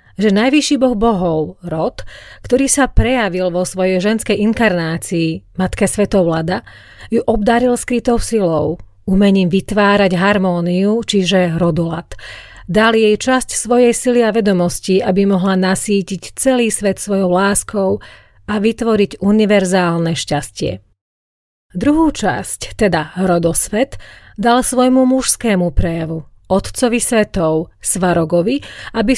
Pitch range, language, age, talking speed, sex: 175-225 Hz, Slovak, 30-49, 110 wpm, female